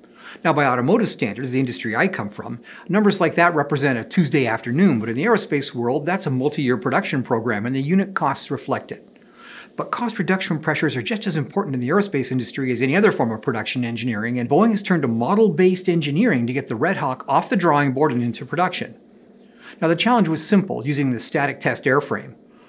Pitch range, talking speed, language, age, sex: 130-190 Hz, 210 wpm, English, 50-69, male